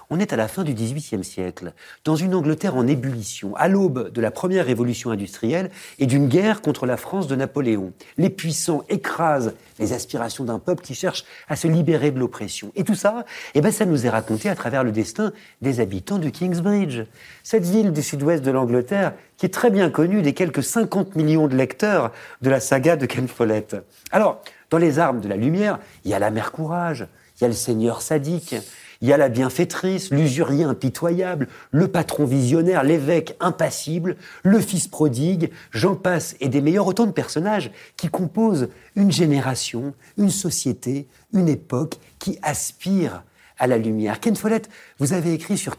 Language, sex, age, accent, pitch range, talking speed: French, male, 50-69, French, 120-180 Hz, 185 wpm